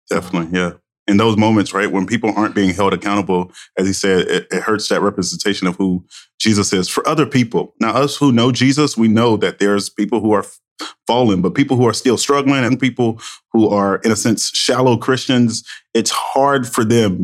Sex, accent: male, American